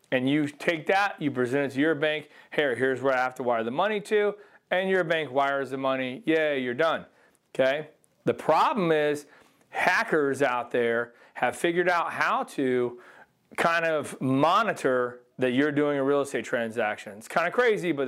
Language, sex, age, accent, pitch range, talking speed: English, male, 40-59, American, 130-170 Hz, 185 wpm